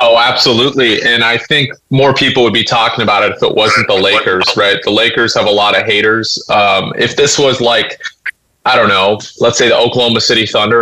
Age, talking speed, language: 30-49, 215 wpm, English